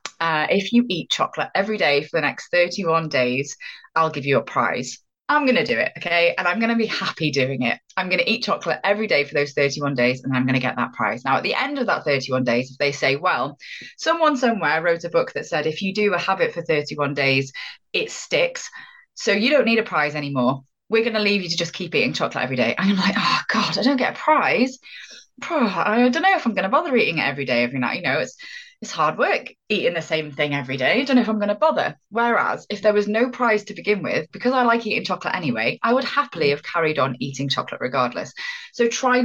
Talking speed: 255 wpm